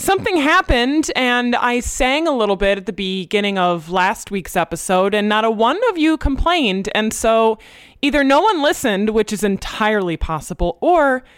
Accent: American